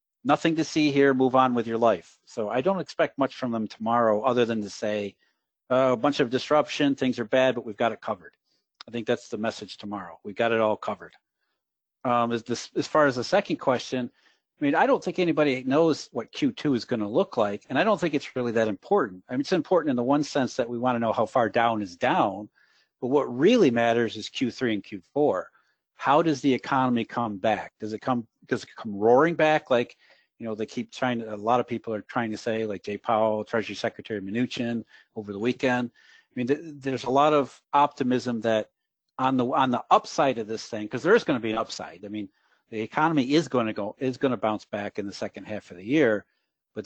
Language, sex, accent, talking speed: English, male, American, 235 wpm